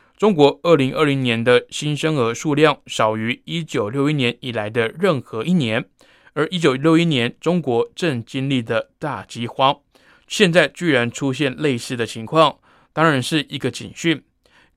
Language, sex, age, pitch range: Chinese, male, 20-39, 120-155 Hz